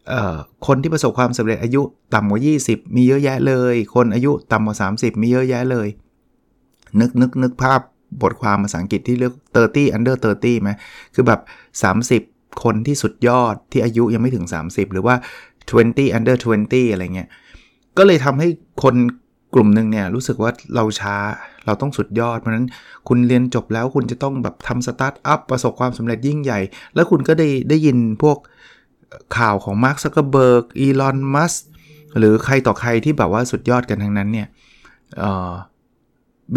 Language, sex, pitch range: Thai, male, 110-135 Hz